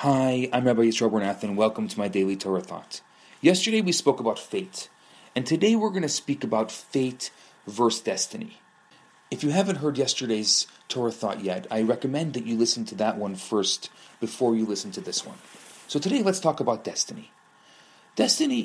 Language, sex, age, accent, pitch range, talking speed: English, male, 40-59, Canadian, 130-200 Hz, 185 wpm